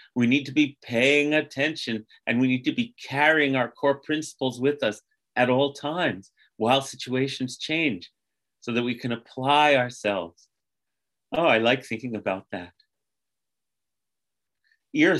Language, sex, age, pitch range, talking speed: English, male, 40-59, 120-150 Hz, 140 wpm